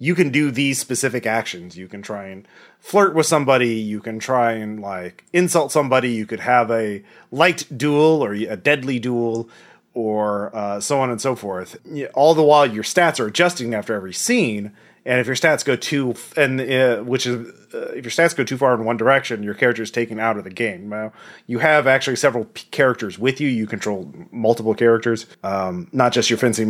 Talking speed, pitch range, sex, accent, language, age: 215 wpm, 110-140 Hz, male, American, English, 30-49